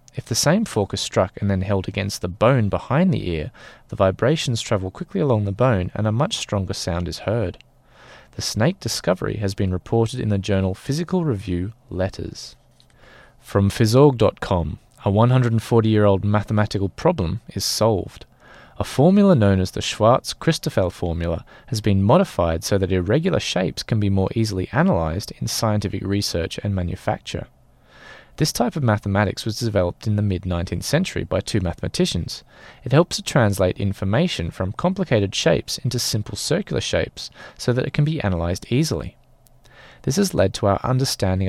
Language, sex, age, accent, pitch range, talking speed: English, male, 20-39, Australian, 95-130 Hz, 160 wpm